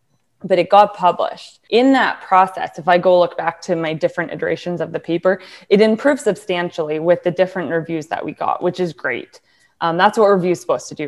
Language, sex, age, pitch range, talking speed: English, female, 20-39, 170-200 Hz, 210 wpm